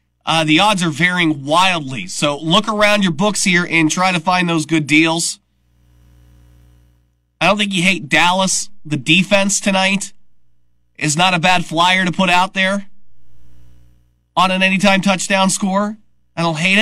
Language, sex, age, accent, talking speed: English, male, 30-49, American, 160 wpm